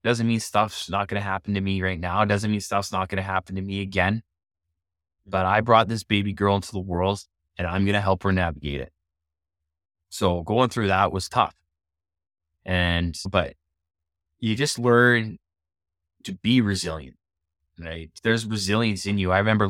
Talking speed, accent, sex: 185 wpm, American, male